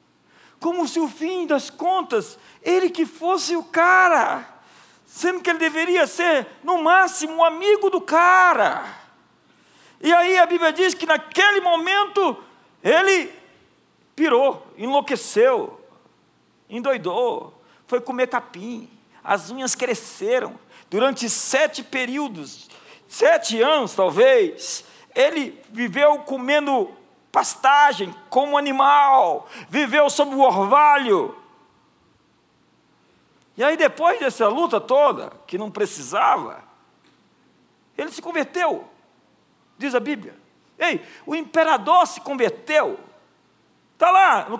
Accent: Brazilian